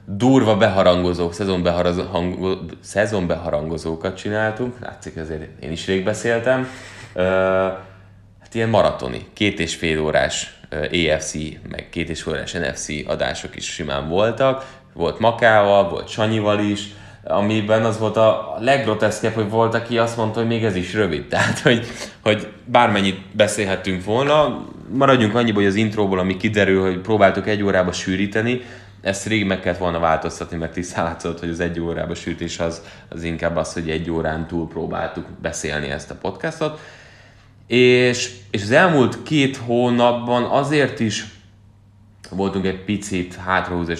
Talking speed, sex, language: 145 wpm, male, Hungarian